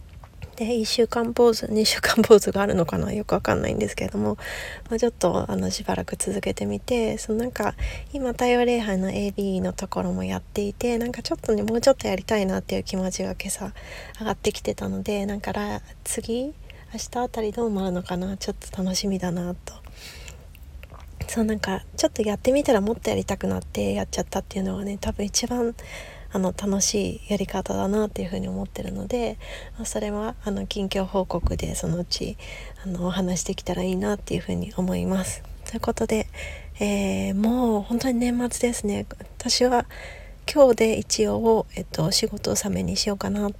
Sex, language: female, Japanese